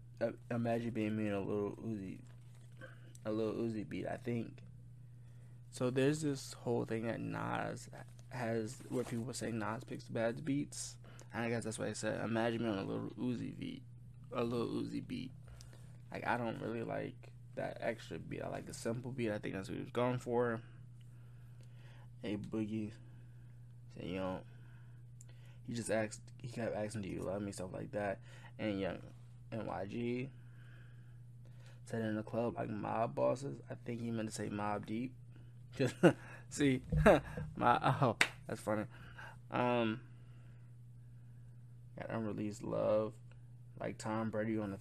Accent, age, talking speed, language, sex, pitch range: American, 20-39, 160 wpm, English, male, 115-125 Hz